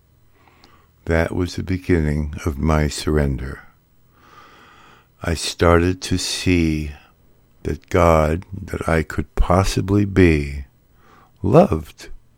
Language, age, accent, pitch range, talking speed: English, 60-79, American, 80-100 Hz, 90 wpm